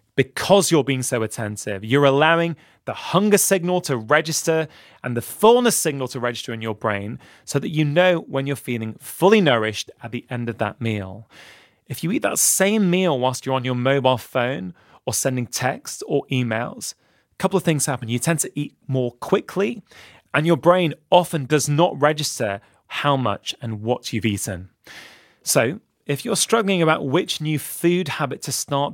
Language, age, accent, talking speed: English, 20-39, British, 180 wpm